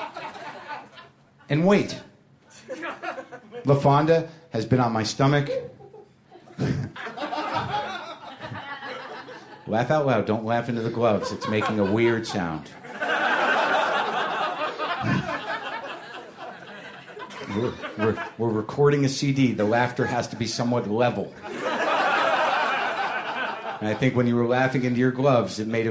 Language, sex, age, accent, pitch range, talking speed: English, male, 50-69, American, 120-170 Hz, 110 wpm